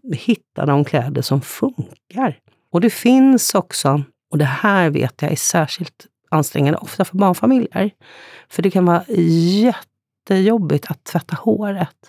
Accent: native